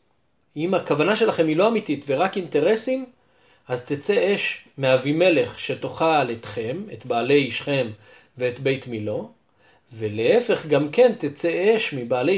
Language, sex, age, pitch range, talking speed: Hebrew, male, 40-59, 130-180 Hz, 125 wpm